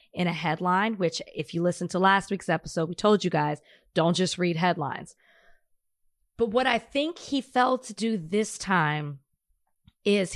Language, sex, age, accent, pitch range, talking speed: English, female, 20-39, American, 180-225 Hz, 175 wpm